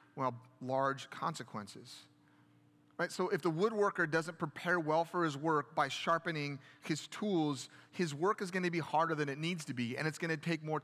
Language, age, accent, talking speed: English, 30-49, American, 190 wpm